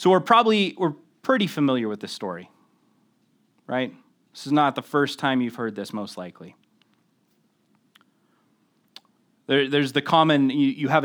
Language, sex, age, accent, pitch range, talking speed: English, male, 30-49, American, 130-160 Hz, 150 wpm